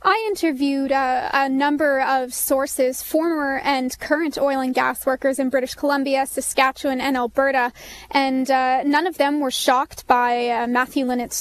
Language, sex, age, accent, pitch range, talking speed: English, female, 20-39, American, 250-285 Hz, 165 wpm